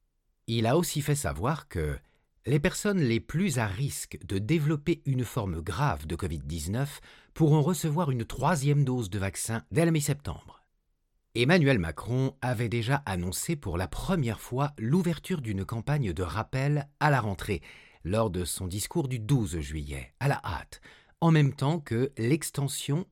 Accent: French